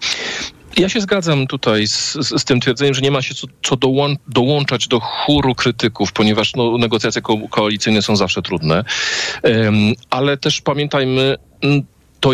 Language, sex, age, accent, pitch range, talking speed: Polish, male, 40-59, native, 105-130 Hz, 140 wpm